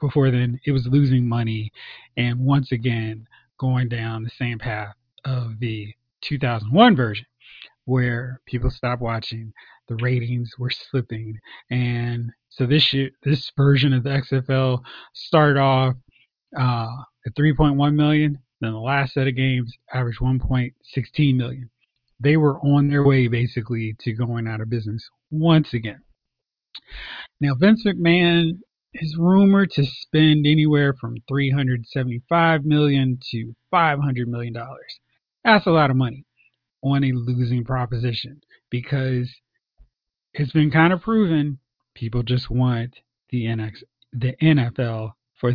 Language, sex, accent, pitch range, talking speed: English, male, American, 120-145 Hz, 130 wpm